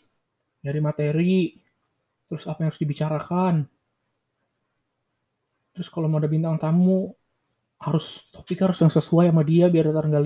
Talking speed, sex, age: 130 wpm, male, 20-39